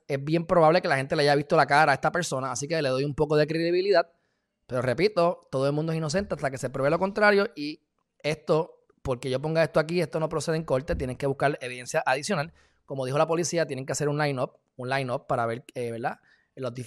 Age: 20-39